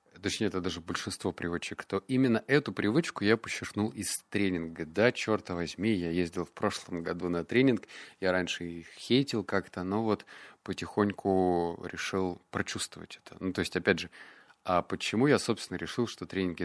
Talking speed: 165 wpm